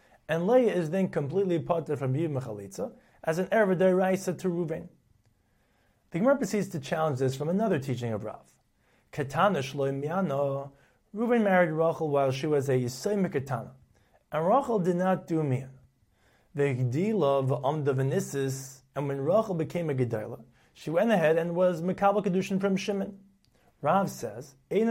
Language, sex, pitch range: English, male, 135-190 Hz